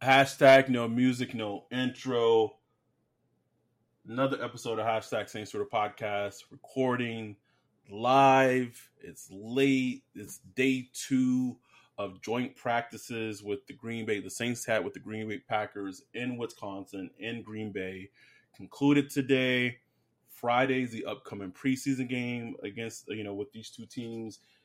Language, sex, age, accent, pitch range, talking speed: English, male, 20-39, American, 110-135 Hz, 130 wpm